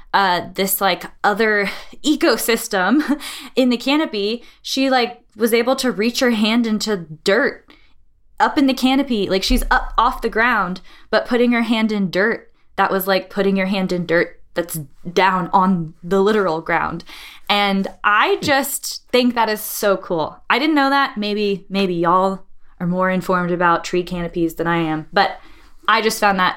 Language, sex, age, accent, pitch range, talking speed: English, female, 10-29, American, 170-215 Hz, 175 wpm